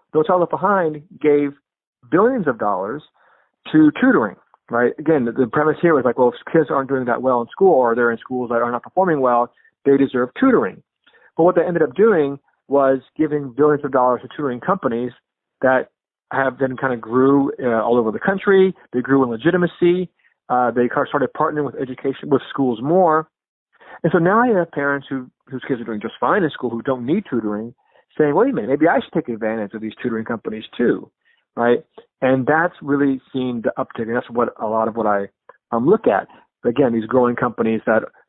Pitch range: 120-150 Hz